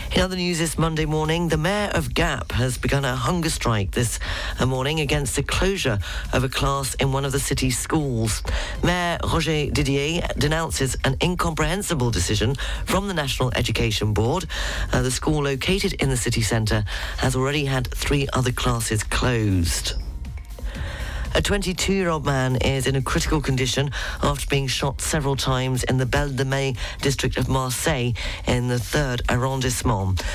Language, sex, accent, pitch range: English, female, British, 115-140 Hz